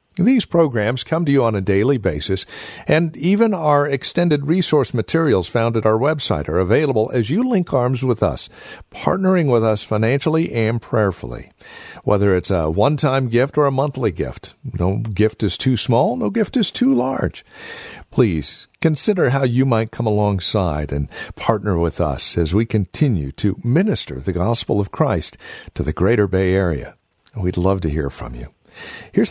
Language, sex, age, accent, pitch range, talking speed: English, male, 50-69, American, 95-140 Hz, 170 wpm